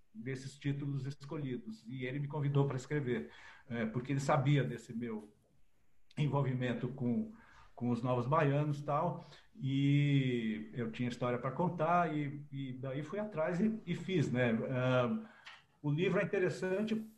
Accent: Brazilian